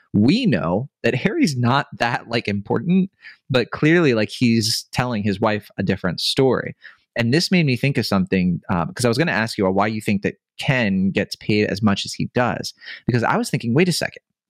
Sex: male